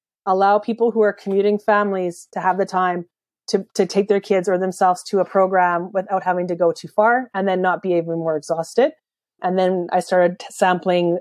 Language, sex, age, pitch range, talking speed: English, female, 30-49, 180-215 Hz, 205 wpm